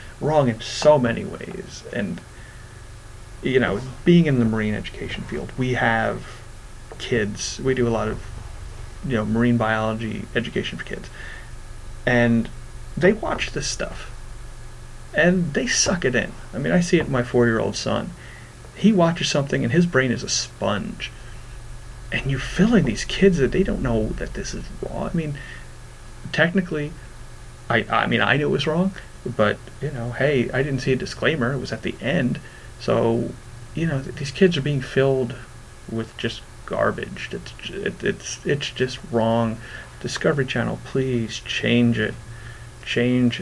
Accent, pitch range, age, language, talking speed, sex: American, 115-135 Hz, 30-49, English, 165 wpm, male